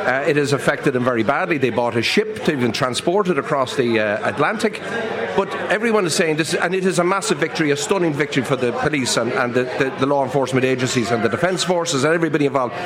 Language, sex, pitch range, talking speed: English, male, 125-155 Hz, 245 wpm